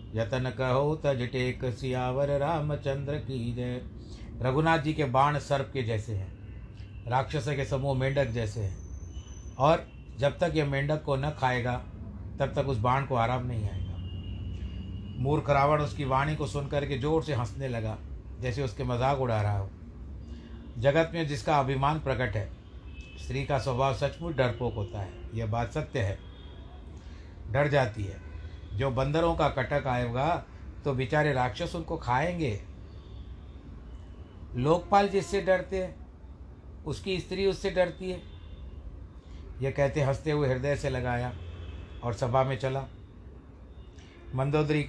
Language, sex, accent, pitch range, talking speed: Hindi, male, native, 90-140 Hz, 140 wpm